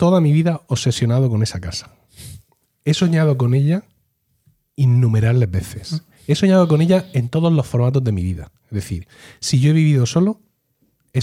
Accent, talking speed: Spanish, 170 wpm